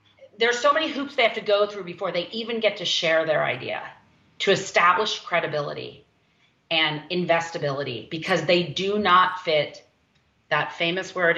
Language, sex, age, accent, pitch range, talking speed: English, female, 40-59, American, 150-190 Hz, 160 wpm